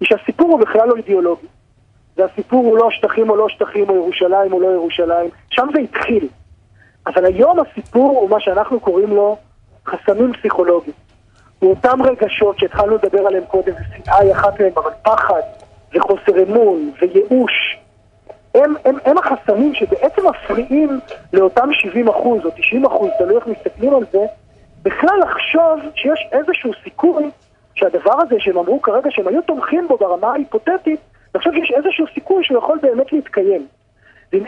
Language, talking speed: Hebrew, 155 wpm